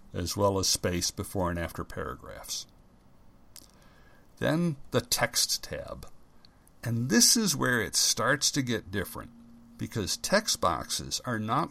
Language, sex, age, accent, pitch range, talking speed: English, male, 60-79, American, 95-135 Hz, 135 wpm